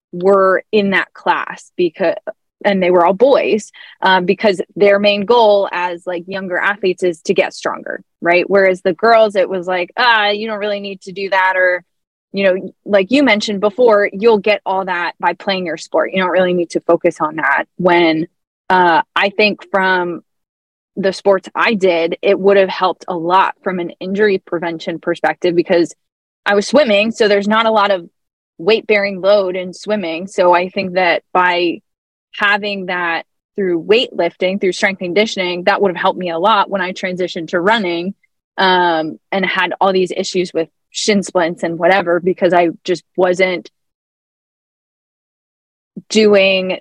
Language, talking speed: English, 175 wpm